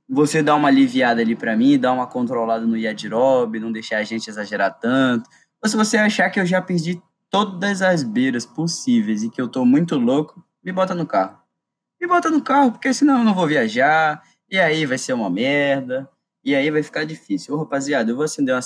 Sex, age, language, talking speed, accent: male, 20-39, Portuguese, 215 wpm, Brazilian